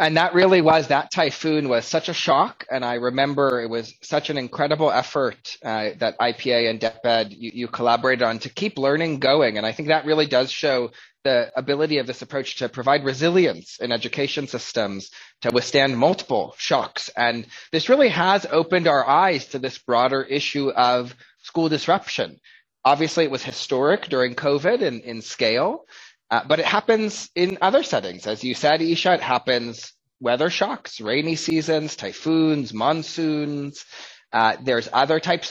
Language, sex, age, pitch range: English, male, 20-39, 120-155 Hz